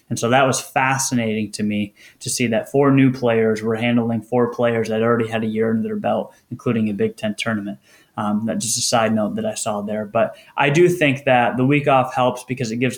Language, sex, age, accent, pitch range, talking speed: English, male, 20-39, American, 115-130 Hz, 240 wpm